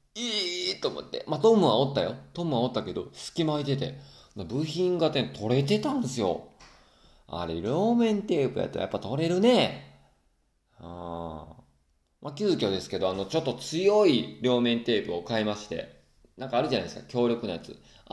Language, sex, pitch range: Japanese, male, 90-135 Hz